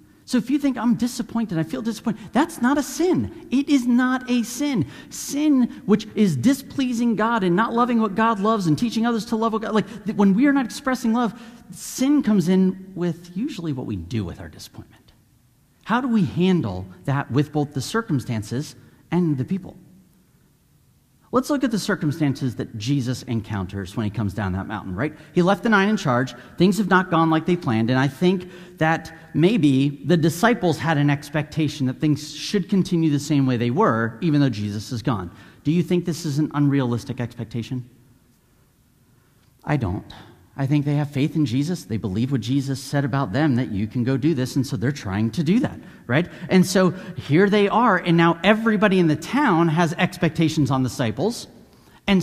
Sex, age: male, 40-59